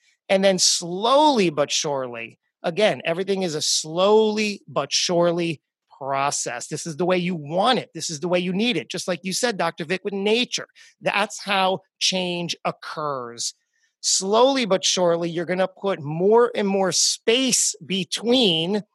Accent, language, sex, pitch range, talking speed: American, English, male, 160-210 Hz, 160 wpm